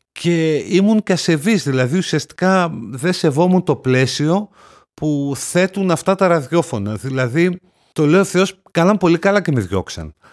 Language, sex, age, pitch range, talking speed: Greek, male, 50-69, 130-170 Hz, 150 wpm